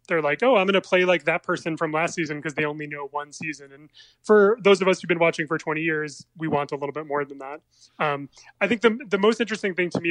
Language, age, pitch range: English, 20-39, 145-180 Hz